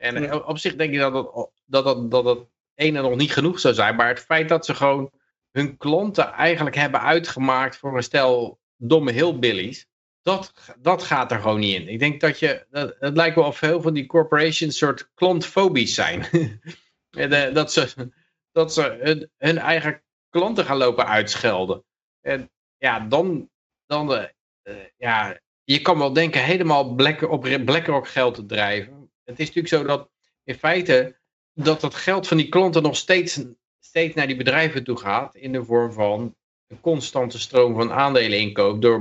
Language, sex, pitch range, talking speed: Dutch, male, 125-160 Hz, 180 wpm